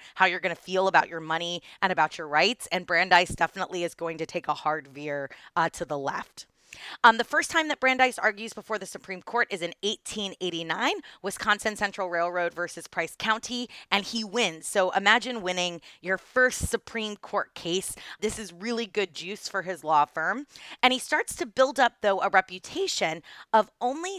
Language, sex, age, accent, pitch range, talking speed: English, female, 30-49, American, 175-230 Hz, 190 wpm